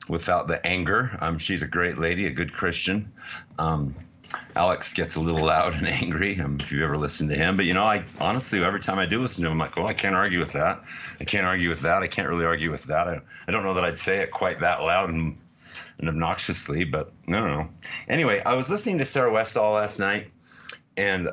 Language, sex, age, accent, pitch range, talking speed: English, male, 40-59, American, 80-100 Hz, 235 wpm